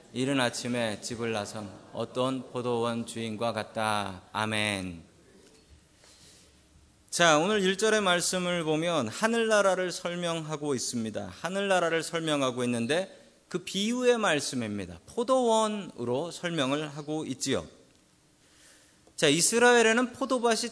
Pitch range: 120-200 Hz